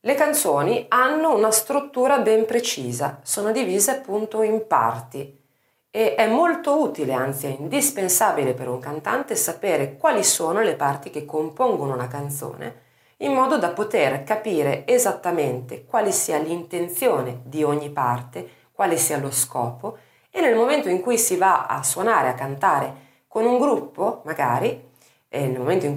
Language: Italian